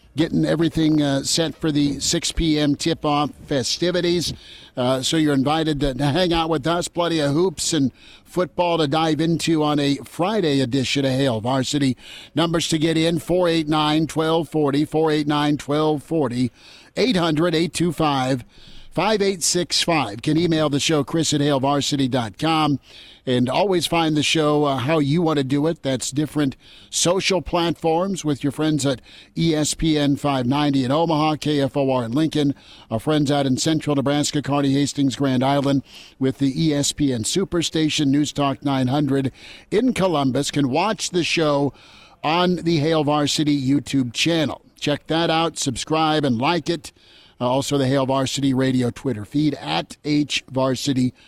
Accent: American